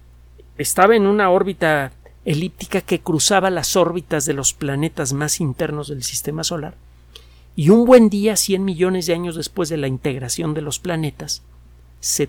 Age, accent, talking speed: 50-69, Mexican, 160 wpm